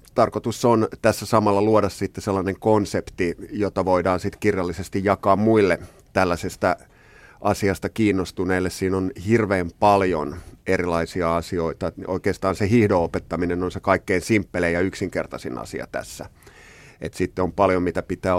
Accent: native